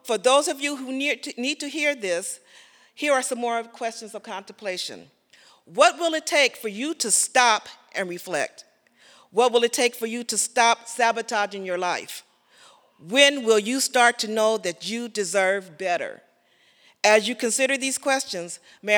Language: English